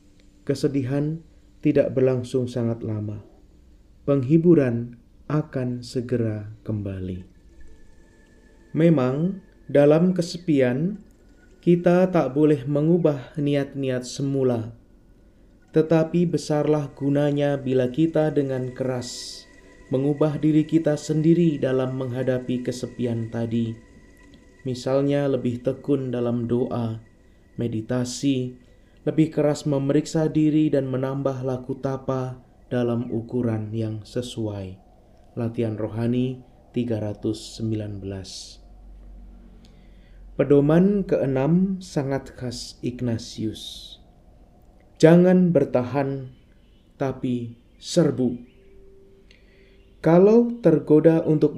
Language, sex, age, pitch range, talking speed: Indonesian, male, 20-39, 115-155 Hz, 75 wpm